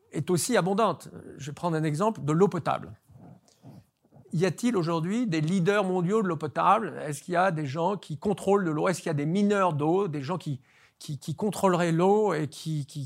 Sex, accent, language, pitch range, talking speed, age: male, French, French, 135-185 Hz, 215 wpm, 50-69